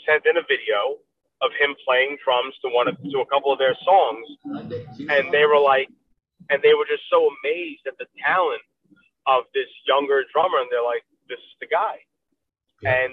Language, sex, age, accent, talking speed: English, male, 30-49, American, 190 wpm